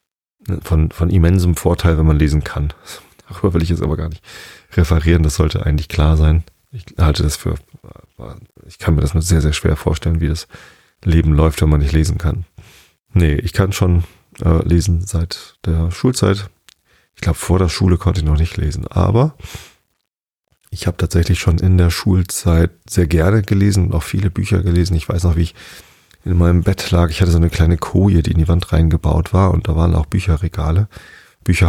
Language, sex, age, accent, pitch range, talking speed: German, male, 40-59, German, 80-90 Hz, 195 wpm